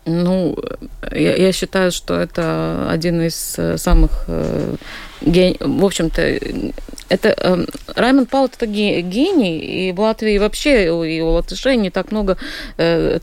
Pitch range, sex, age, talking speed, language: 155-190 Hz, female, 30-49, 135 wpm, Russian